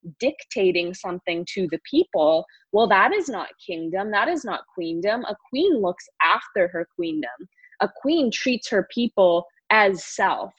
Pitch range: 180-220 Hz